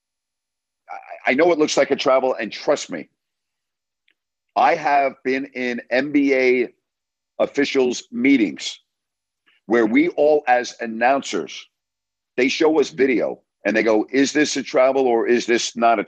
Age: 50-69